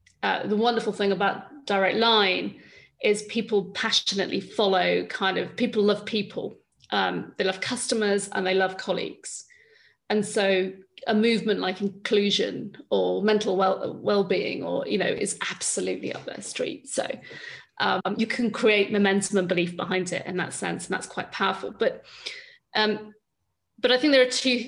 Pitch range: 190-220 Hz